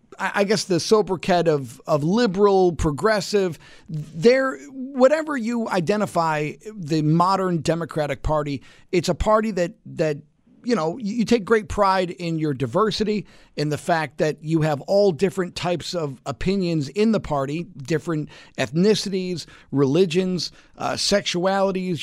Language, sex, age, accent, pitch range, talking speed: English, male, 50-69, American, 155-210 Hz, 130 wpm